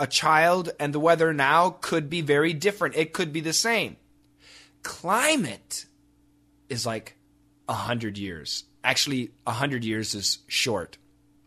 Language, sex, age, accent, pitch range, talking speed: English, male, 30-49, American, 135-170 Hz, 140 wpm